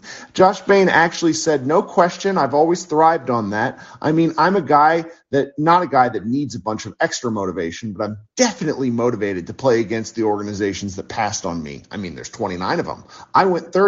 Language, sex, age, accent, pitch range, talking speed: English, male, 40-59, American, 130-175 Hz, 210 wpm